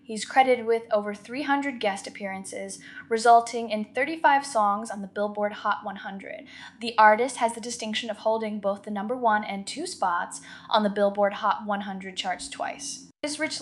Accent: American